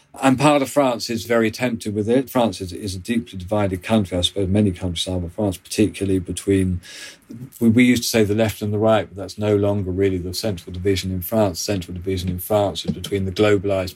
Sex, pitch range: male, 90-105 Hz